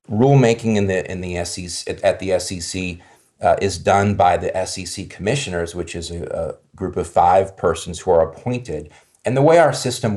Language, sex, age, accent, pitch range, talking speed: English, male, 40-59, American, 85-105 Hz, 190 wpm